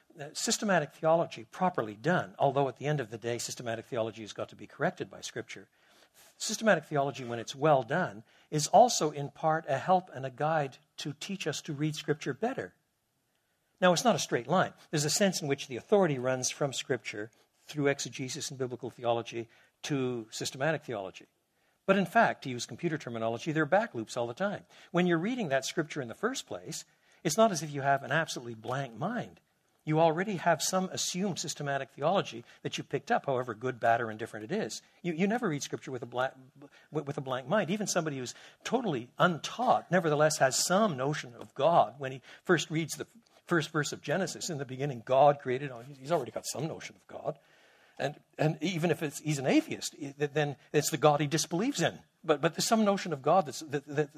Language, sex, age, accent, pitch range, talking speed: English, male, 60-79, American, 130-175 Hz, 210 wpm